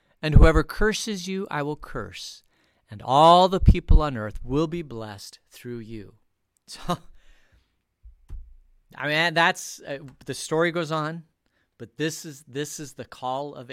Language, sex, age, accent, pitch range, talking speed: English, male, 40-59, American, 125-170 Hz, 150 wpm